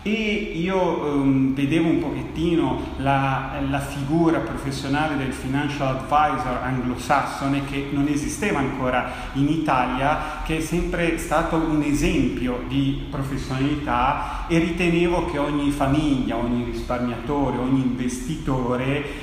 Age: 30-49